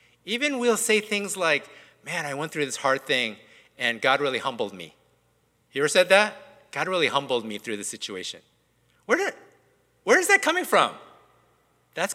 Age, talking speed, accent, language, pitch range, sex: 50-69, 180 wpm, American, English, 175-250 Hz, male